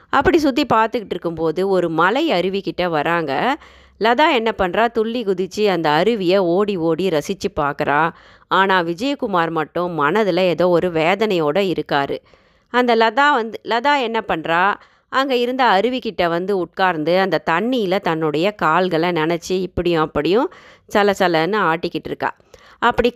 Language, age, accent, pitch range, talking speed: Tamil, 30-49, native, 170-225 Hz, 125 wpm